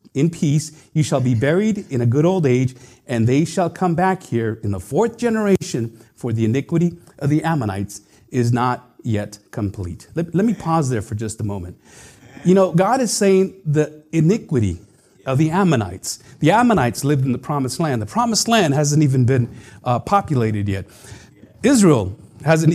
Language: English